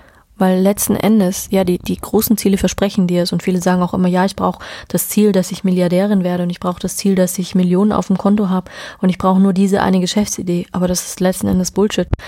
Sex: female